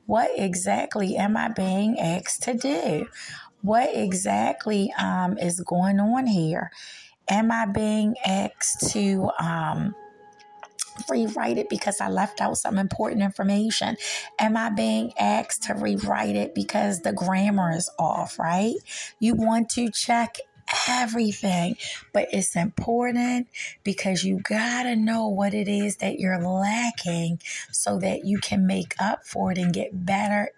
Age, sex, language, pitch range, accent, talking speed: 30-49, female, English, 190-230 Hz, American, 145 wpm